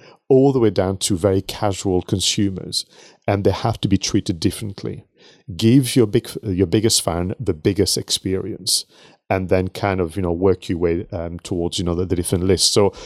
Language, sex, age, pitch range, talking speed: English, male, 40-59, 90-115 Hz, 195 wpm